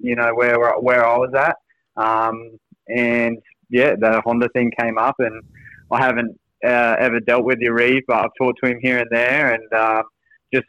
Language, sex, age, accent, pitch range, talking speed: English, male, 20-39, Australian, 110-120 Hz, 195 wpm